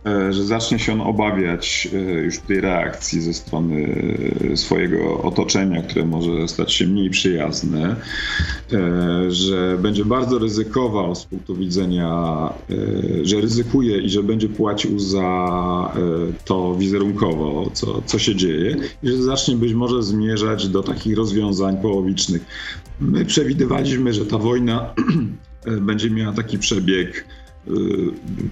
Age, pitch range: 40-59, 85-110 Hz